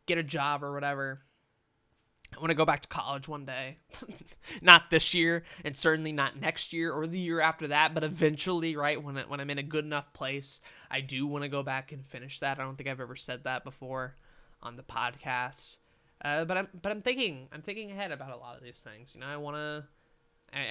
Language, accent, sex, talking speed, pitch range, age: English, American, male, 230 wpm, 130-155 Hz, 20-39